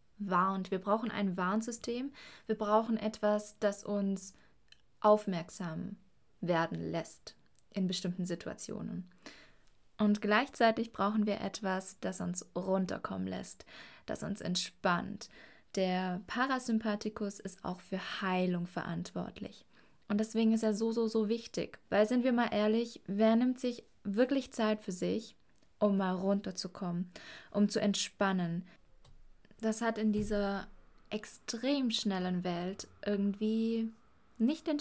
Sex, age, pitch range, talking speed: female, 20-39, 185-220 Hz, 120 wpm